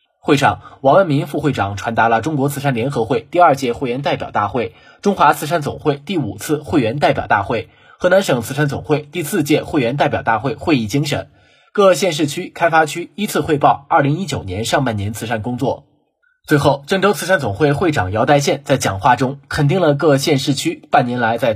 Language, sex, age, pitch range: Chinese, male, 20-39, 120-155 Hz